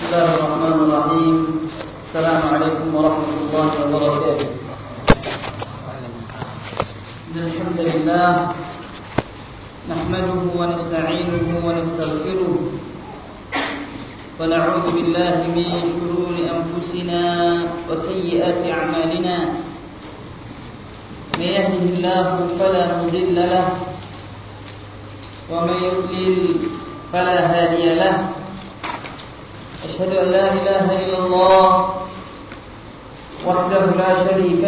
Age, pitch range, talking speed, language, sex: 40-59, 160-190 Hz, 65 wpm, Malay, male